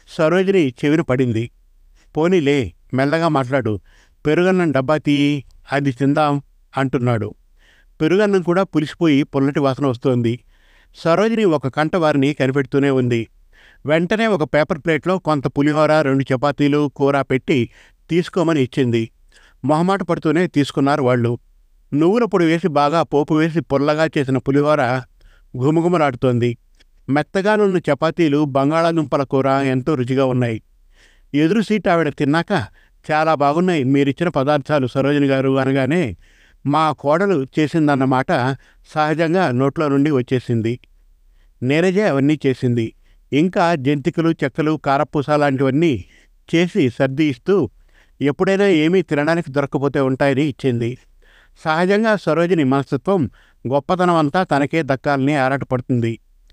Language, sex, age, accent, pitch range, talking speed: Telugu, male, 50-69, native, 130-160 Hz, 100 wpm